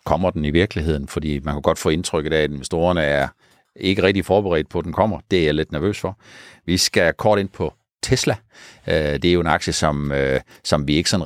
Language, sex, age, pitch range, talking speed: Danish, male, 60-79, 70-95 Hz, 230 wpm